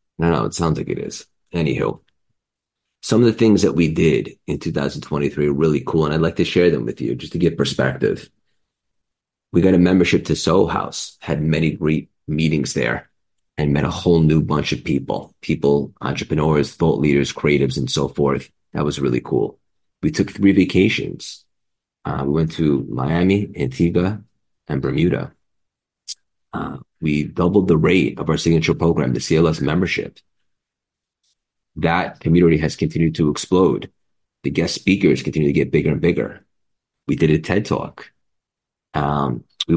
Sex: male